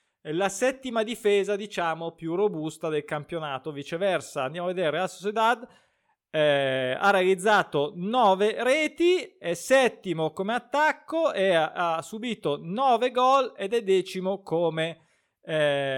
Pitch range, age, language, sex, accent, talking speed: 155-230 Hz, 20-39, Italian, male, native, 130 wpm